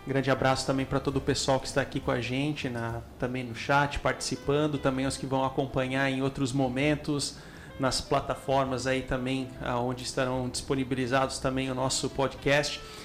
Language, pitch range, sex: Portuguese, 130-140 Hz, male